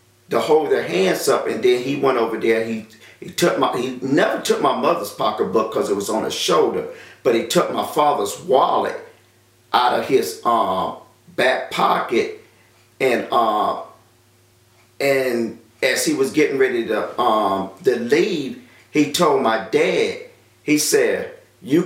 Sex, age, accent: male, 40-59, American